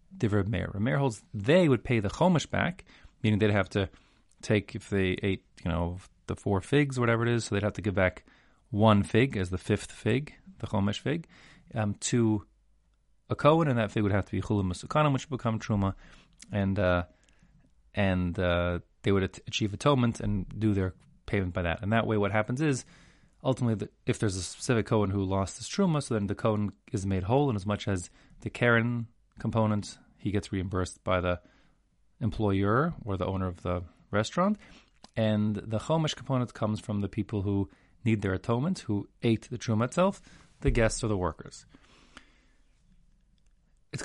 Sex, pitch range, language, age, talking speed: male, 100-120 Hz, English, 30-49, 190 wpm